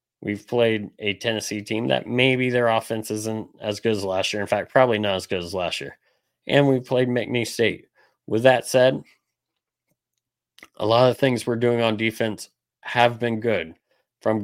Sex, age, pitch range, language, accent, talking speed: male, 30-49, 110-125 Hz, English, American, 185 wpm